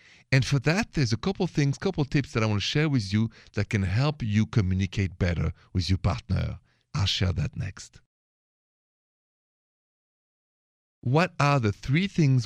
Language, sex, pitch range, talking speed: English, male, 95-125 Hz, 180 wpm